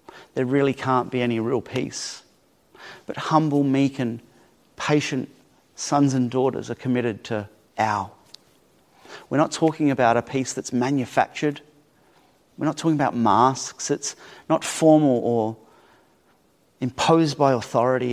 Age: 30-49